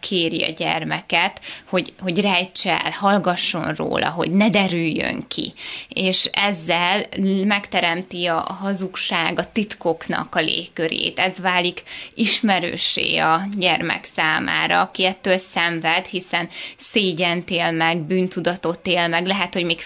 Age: 20-39